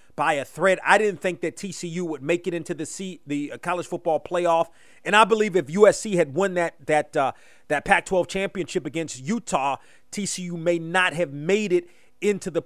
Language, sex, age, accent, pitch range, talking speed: English, male, 30-49, American, 165-200 Hz, 195 wpm